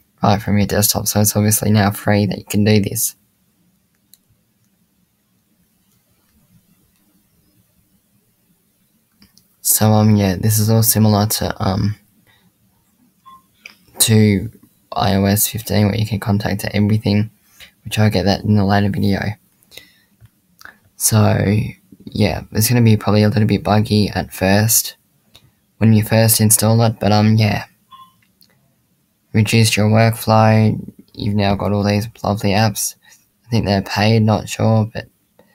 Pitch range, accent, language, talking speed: 100-110 Hz, Australian, English, 130 wpm